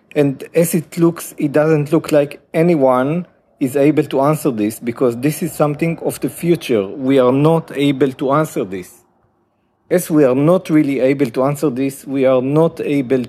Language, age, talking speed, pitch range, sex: English, 50-69, 185 wpm, 130-160 Hz, male